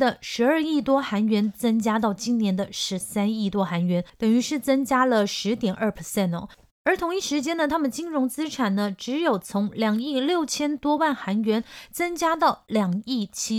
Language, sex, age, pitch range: Chinese, female, 30-49, 195-255 Hz